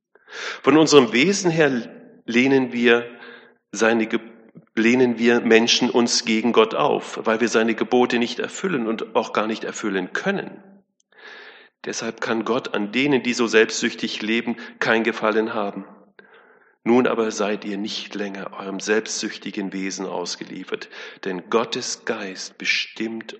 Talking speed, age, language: 130 wpm, 40-59, German